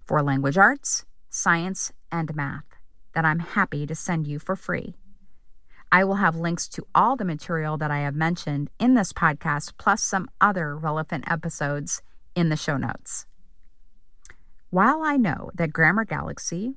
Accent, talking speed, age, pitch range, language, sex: American, 155 wpm, 40-59, 150-195 Hz, English, female